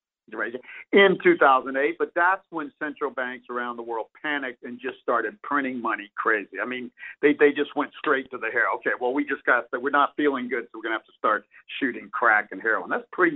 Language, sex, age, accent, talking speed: English, male, 50-69, American, 220 wpm